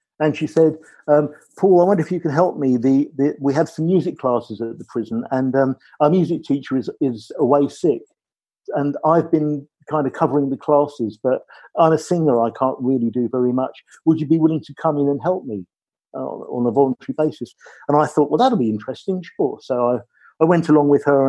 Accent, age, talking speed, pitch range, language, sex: British, 50-69, 225 wpm, 130-160 Hz, English, male